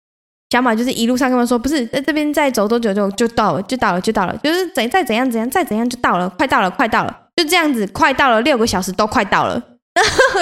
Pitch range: 205-270 Hz